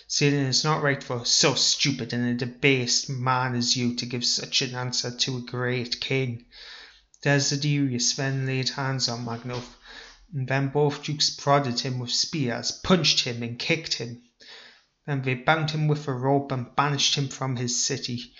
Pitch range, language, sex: 125-140 Hz, English, male